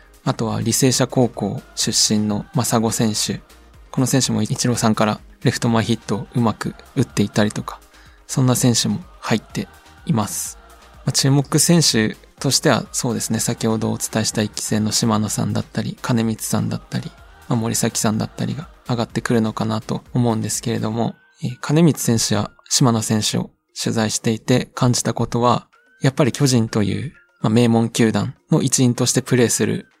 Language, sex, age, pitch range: Japanese, male, 20-39, 110-130 Hz